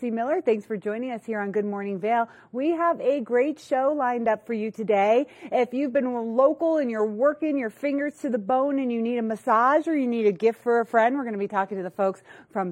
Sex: female